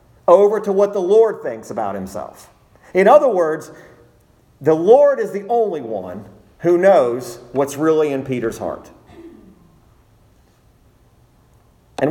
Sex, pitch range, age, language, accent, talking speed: male, 140-200 Hz, 50-69, English, American, 125 wpm